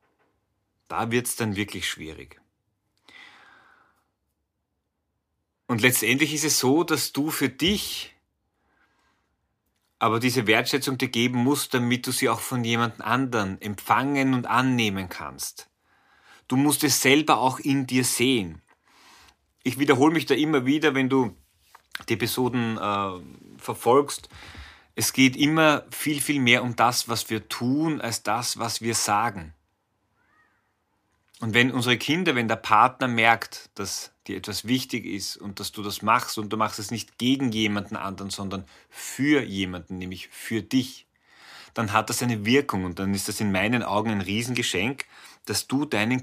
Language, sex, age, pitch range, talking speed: German, male, 30-49, 100-130 Hz, 150 wpm